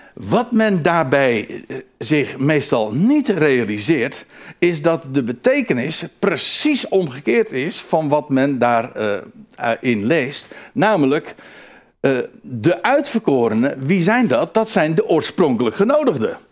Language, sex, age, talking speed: Dutch, male, 60-79, 115 wpm